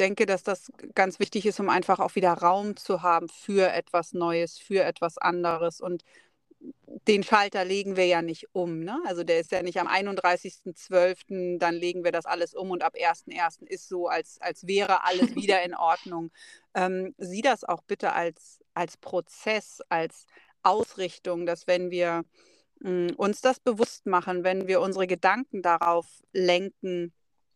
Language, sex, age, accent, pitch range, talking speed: German, female, 40-59, German, 175-200 Hz, 170 wpm